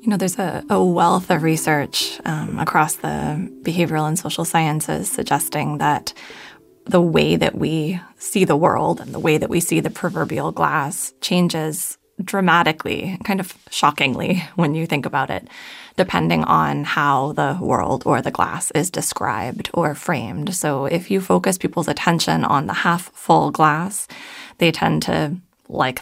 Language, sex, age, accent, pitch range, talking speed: English, female, 20-39, American, 155-190 Hz, 160 wpm